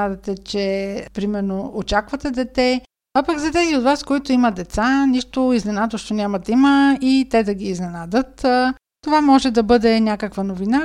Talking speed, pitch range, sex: 160 wpm, 205-255 Hz, female